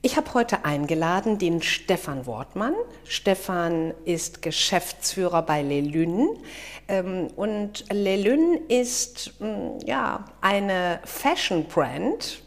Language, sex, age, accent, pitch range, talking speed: German, female, 50-69, German, 170-230 Hz, 85 wpm